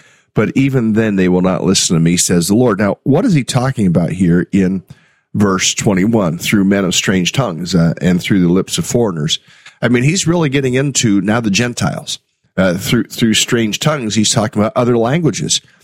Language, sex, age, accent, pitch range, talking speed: English, male, 40-59, American, 95-135 Hz, 200 wpm